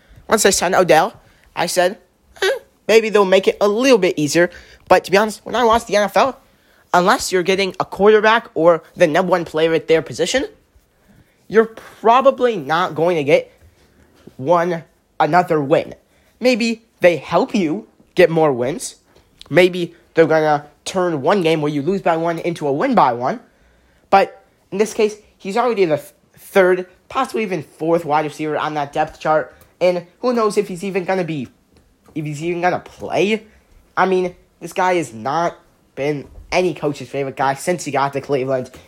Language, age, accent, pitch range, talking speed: English, 20-39, American, 160-225 Hz, 180 wpm